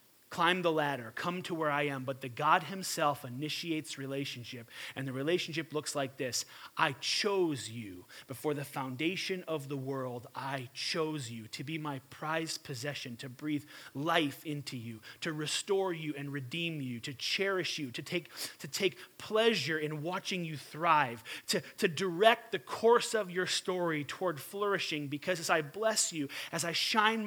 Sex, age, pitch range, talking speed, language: male, 30-49, 150-195 Hz, 170 wpm, English